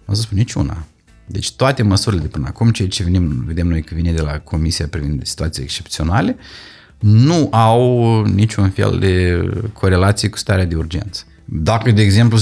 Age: 30-49